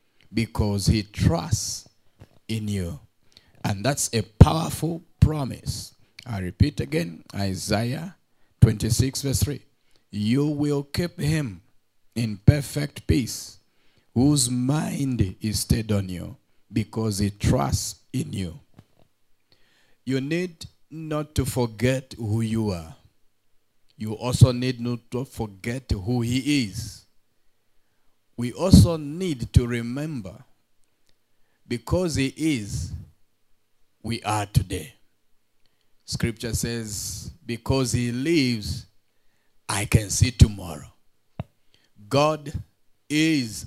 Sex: male